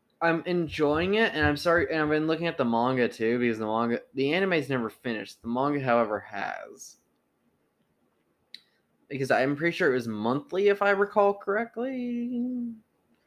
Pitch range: 115-165 Hz